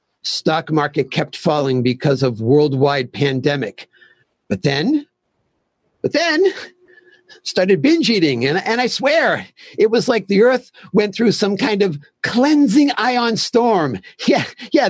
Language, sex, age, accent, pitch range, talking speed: English, male, 50-69, American, 160-240 Hz, 135 wpm